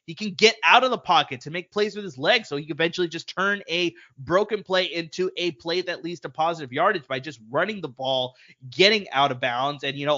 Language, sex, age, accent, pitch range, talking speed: English, male, 20-39, American, 135-190 Hz, 250 wpm